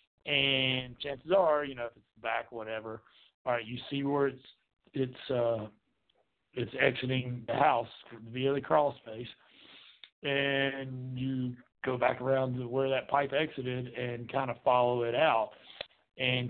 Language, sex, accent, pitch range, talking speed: English, male, American, 120-145 Hz, 155 wpm